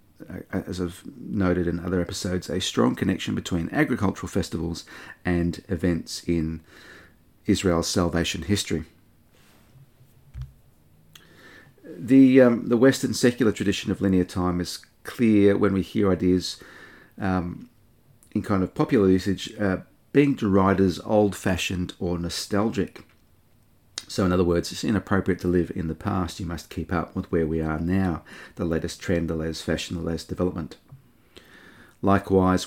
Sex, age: male, 40-59